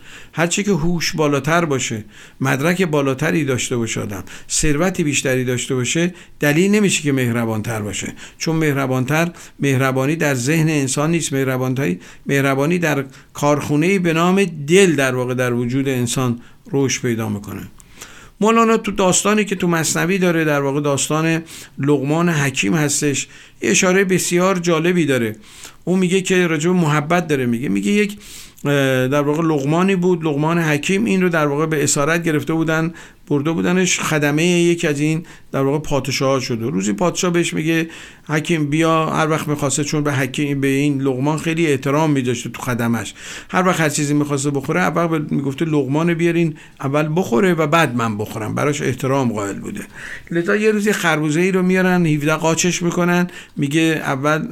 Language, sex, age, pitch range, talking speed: Persian, male, 50-69, 135-170 Hz, 155 wpm